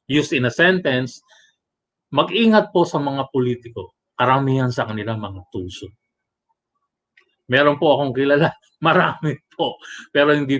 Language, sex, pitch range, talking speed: Filipino, male, 130-200 Hz, 125 wpm